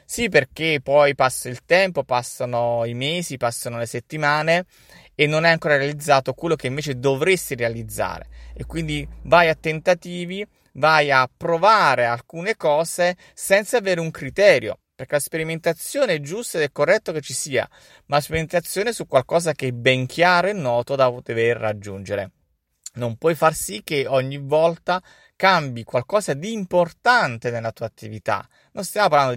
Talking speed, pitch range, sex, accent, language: 160 wpm, 120-170 Hz, male, native, Italian